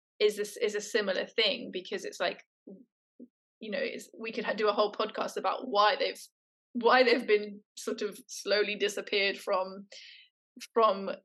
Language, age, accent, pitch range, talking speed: English, 20-39, British, 200-255 Hz, 165 wpm